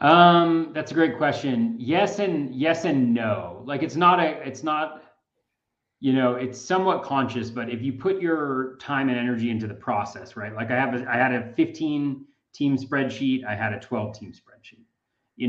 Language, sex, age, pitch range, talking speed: English, male, 30-49, 110-140 Hz, 190 wpm